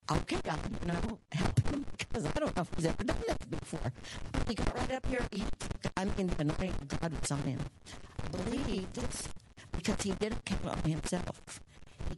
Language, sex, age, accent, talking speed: English, female, 60-79, American, 210 wpm